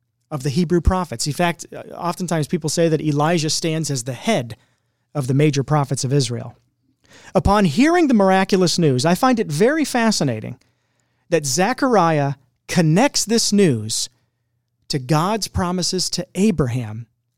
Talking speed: 140 wpm